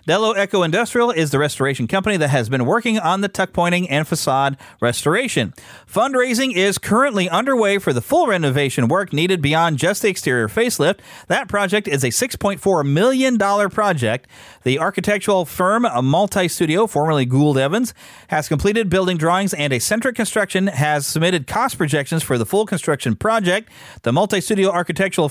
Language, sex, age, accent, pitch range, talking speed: English, male, 40-59, American, 140-210 Hz, 165 wpm